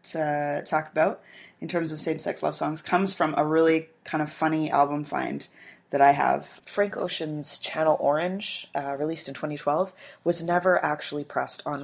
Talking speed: 170 wpm